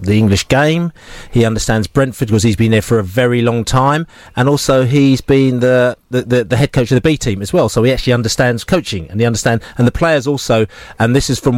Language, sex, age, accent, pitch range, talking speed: English, male, 40-59, British, 115-140 Hz, 245 wpm